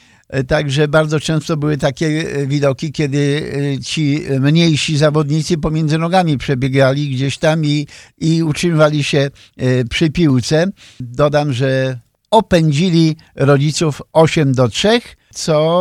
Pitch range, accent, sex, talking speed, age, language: 135-160 Hz, native, male, 110 wpm, 50-69, Polish